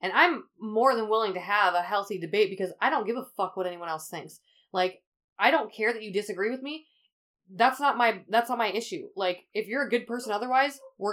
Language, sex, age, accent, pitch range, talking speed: English, female, 20-39, American, 195-245 Hz, 235 wpm